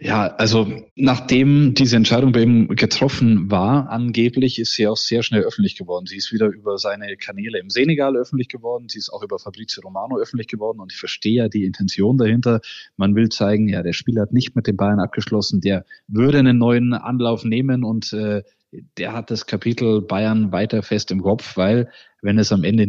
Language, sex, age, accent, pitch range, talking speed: German, male, 20-39, German, 105-125 Hz, 200 wpm